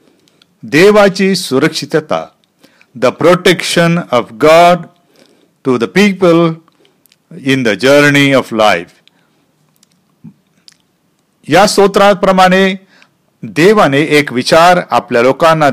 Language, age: Marathi, 50-69